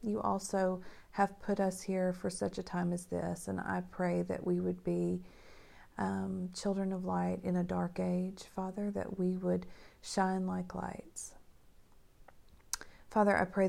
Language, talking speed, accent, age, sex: English, 160 wpm, American, 40-59, female